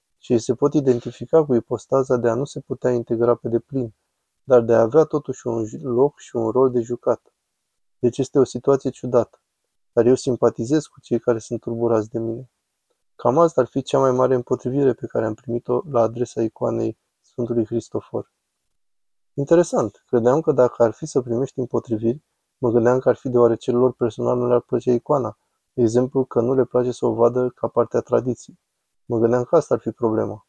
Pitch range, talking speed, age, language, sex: 115-130 Hz, 190 wpm, 20-39, Romanian, male